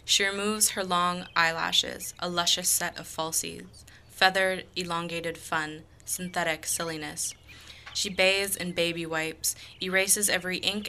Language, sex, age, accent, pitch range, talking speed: English, female, 20-39, American, 160-180 Hz, 125 wpm